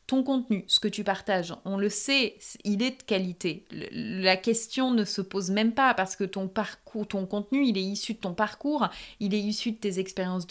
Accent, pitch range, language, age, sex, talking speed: French, 195-240 Hz, French, 30-49, female, 210 wpm